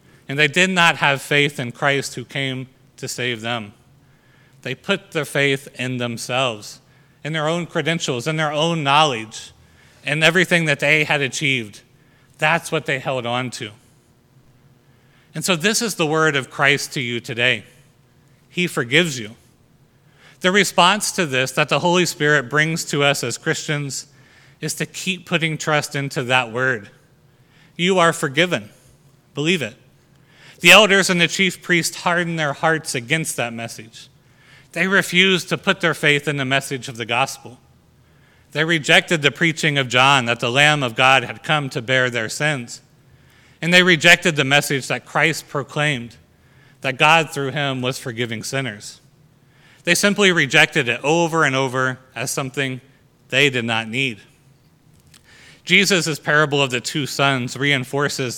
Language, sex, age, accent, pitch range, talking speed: English, male, 30-49, American, 130-160 Hz, 160 wpm